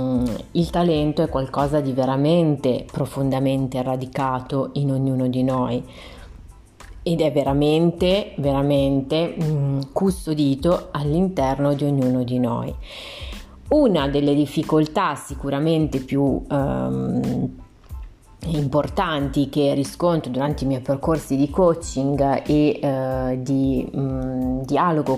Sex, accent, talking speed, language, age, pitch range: female, native, 95 wpm, Italian, 30-49, 135-170 Hz